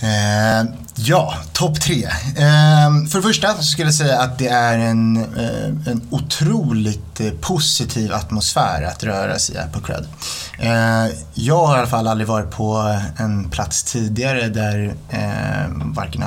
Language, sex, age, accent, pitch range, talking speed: Swedish, male, 30-49, native, 105-130 Hz, 150 wpm